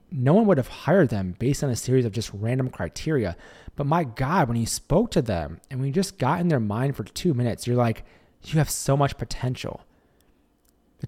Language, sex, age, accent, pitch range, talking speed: English, male, 30-49, American, 115-165 Hz, 215 wpm